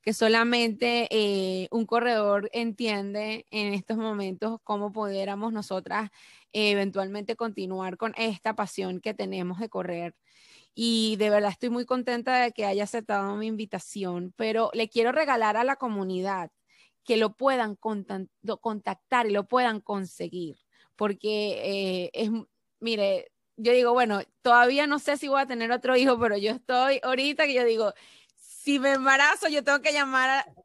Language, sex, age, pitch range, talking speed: Spanish, female, 20-39, 210-250 Hz, 155 wpm